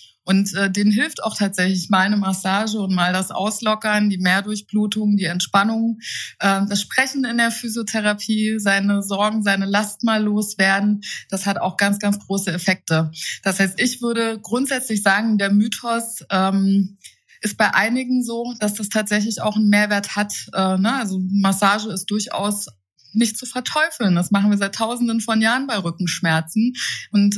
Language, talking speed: German, 165 wpm